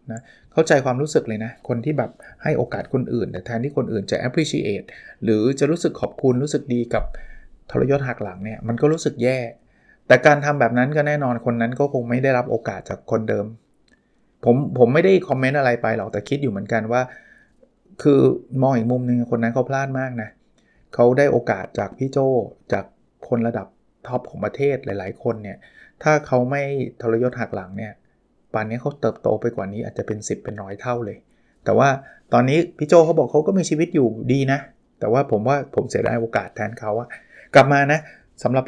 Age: 20-39